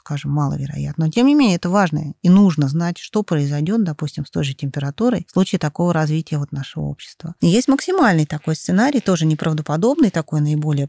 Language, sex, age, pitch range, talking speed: Russian, female, 20-39, 150-180 Hz, 185 wpm